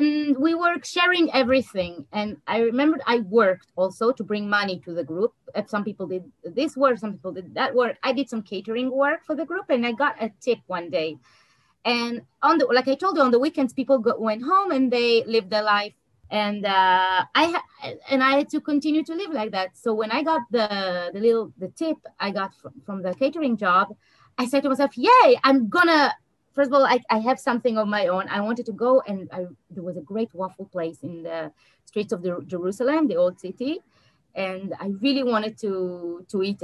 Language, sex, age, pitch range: English, female, 30-49, 195-275 Hz